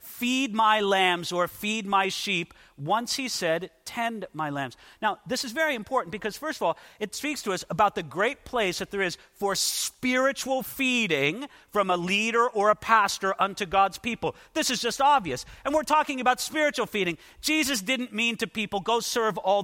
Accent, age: American, 50-69